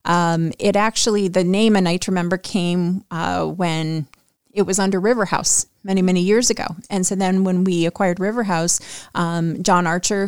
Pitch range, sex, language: 170-210 Hz, female, English